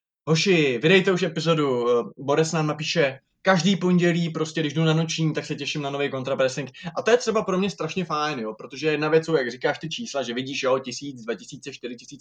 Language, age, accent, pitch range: Czech, 20-39, native, 135-165 Hz